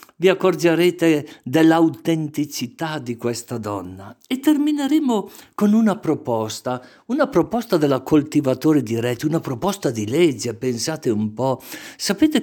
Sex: male